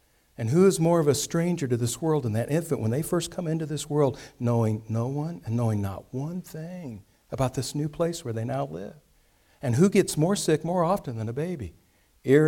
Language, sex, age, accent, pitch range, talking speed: English, male, 60-79, American, 130-190 Hz, 225 wpm